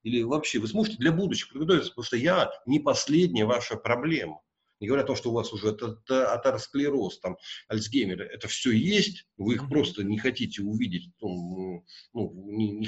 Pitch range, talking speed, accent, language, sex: 110-155 Hz, 175 wpm, native, Russian, male